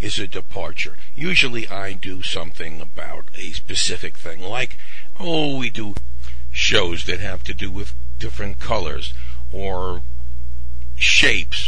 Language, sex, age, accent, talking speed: English, male, 60-79, American, 130 wpm